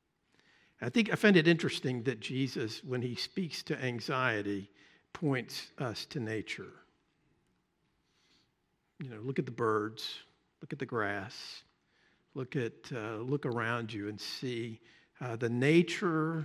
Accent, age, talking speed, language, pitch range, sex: American, 50-69, 140 wpm, English, 120-155 Hz, male